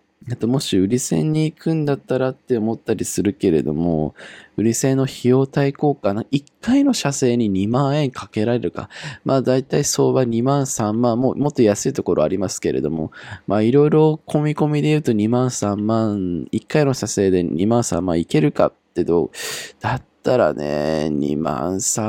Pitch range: 100-130 Hz